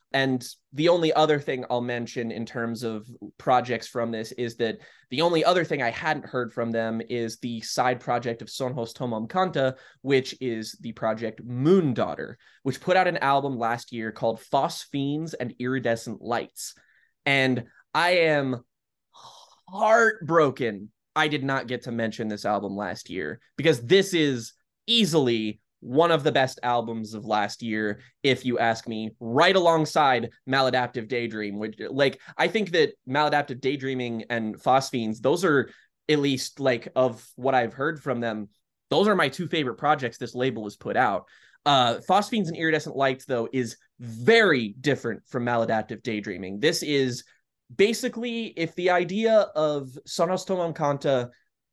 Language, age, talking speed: English, 20-39, 155 wpm